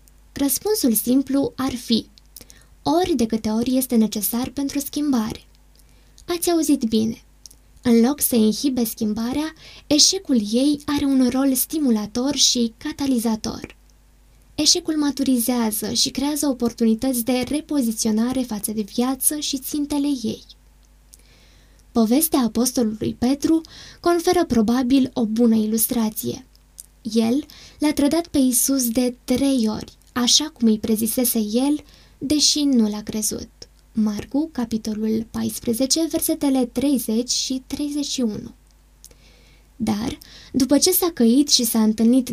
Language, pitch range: Romanian, 225-285 Hz